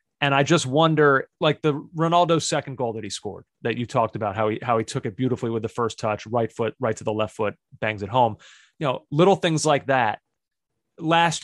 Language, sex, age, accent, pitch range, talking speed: English, male, 30-49, American, 125-155 Hz, 230 wpm